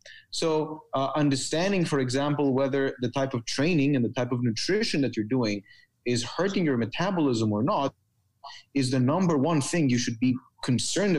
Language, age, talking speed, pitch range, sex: English, 30-49, 175 wpm, 130-160 Hz, male